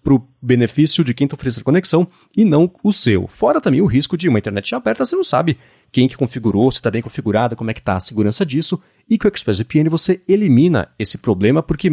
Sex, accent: male, Brazilian